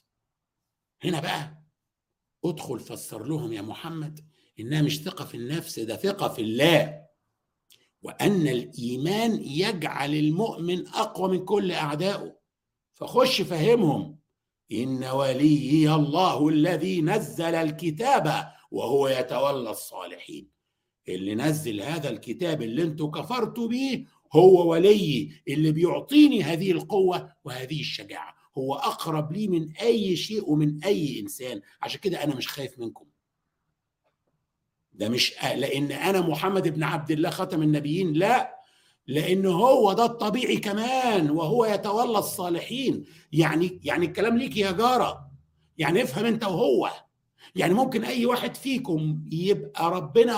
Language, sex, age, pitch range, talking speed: Arabic, male, 60-79, 155-220 Hz, 120 wpm